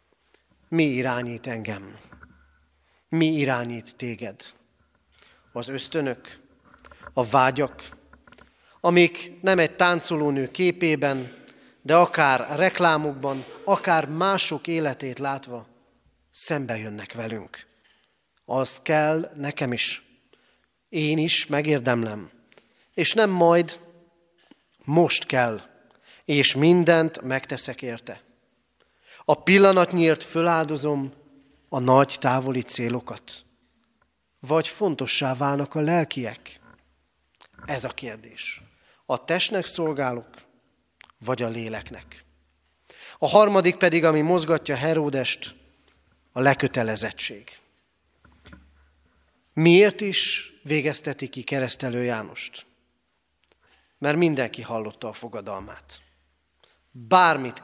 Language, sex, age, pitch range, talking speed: Hungarian, male, 40-59, 120-165 Hz, 85 wpm